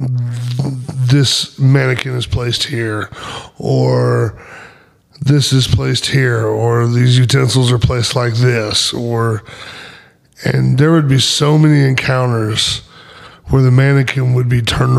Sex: male